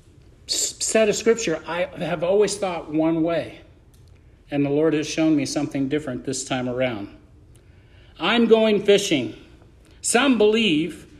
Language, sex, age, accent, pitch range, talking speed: English, male, 50-69, American, 135-205 Hz, 135 wpm